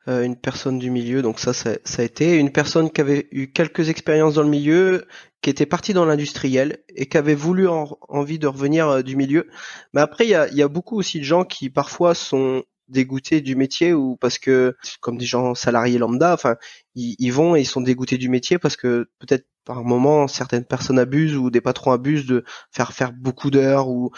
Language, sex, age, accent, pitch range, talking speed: French, male, 20-39, French, 125-155 Hz, 220 wpm